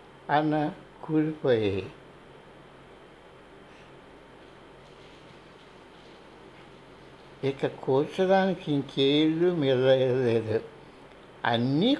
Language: Telugu